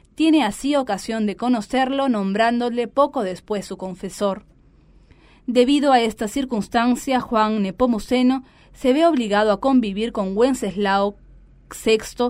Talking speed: 115 wpm